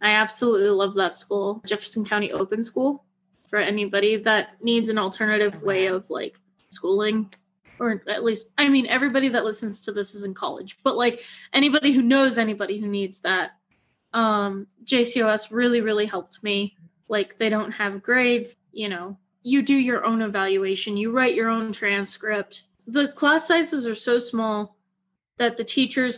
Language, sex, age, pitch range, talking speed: English, female, 20-39, 200-240 Hz, 165 wpm